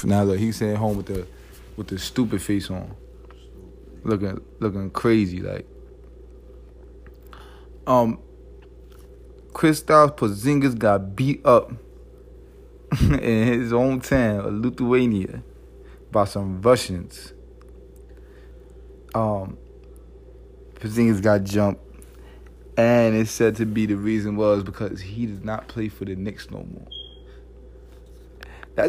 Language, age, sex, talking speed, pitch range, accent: English, 20-39, male, 110 wpm, 100-120 Hz, American